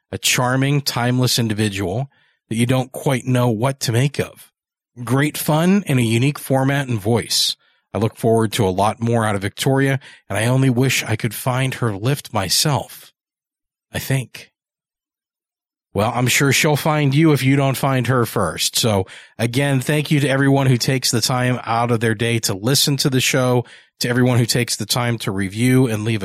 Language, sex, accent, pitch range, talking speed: English, male, American, 110-140 Hz, 190 wpm